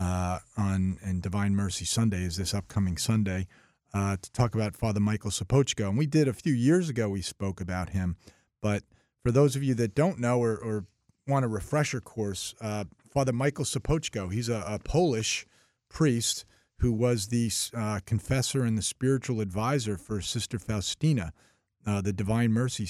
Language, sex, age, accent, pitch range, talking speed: English, male, 40-59, American, 100-125 Hz, 175 wpm